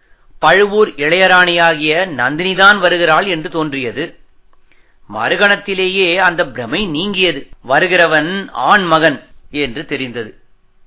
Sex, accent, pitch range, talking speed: male, native, 160-200 Hz, 85 wpm